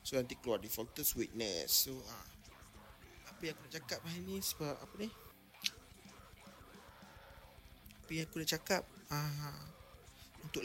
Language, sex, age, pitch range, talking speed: Malay, male, 20-39, 120-155 Hz, 135 wpm